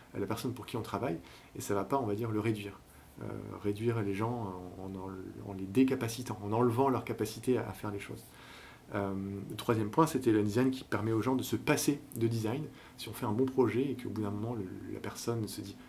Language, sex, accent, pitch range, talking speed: French, male, French, 105-125 Hz, 245 wpm